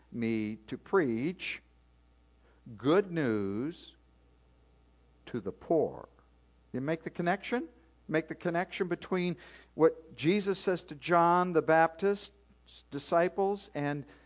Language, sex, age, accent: English, male, 50-69, American